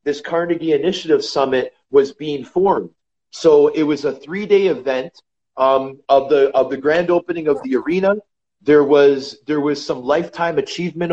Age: 30-49